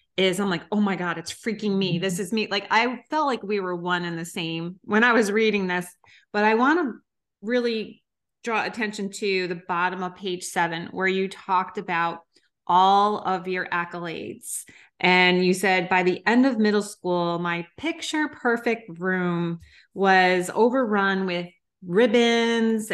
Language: English